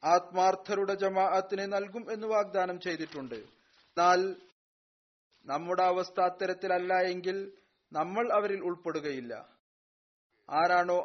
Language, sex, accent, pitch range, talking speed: Malayalam, male, native, 175-195 Hz, 80 wpm